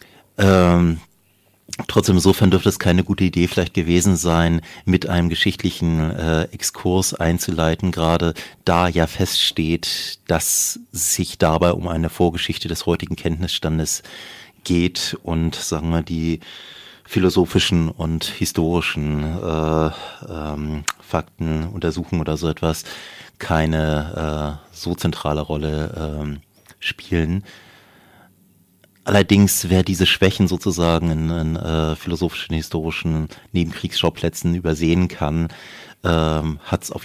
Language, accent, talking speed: German, German, 110 wpm